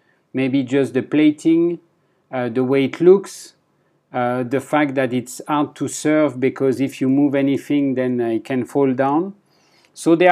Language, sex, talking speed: English, male, 170 wpm